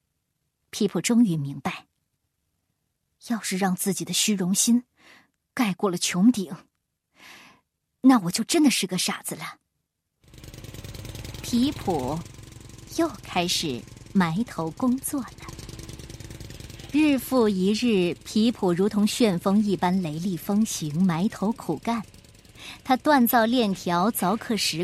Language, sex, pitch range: Chinese, male, 185-260 Hz